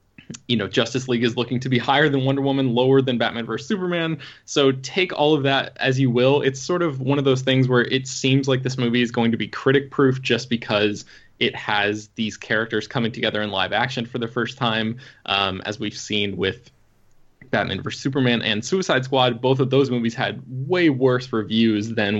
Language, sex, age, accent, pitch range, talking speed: English, male, 20-39, American, 105-130 Hz, 215 wpm